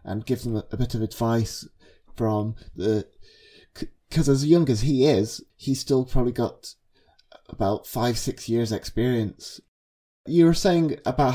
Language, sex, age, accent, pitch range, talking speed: English, male, 30-49, British, 100-125 Hz, 155 wpm